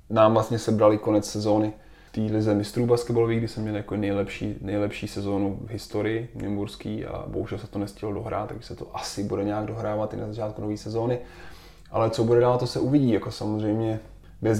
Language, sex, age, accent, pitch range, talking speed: Czech, male, 20-39, native, 100-110 Hz, 200 wpm